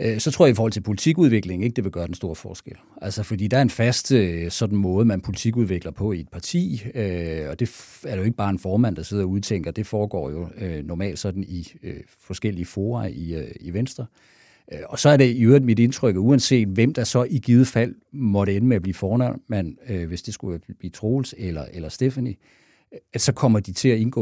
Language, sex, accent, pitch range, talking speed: Danish, male, native, 95-120 Hz, 215 wpm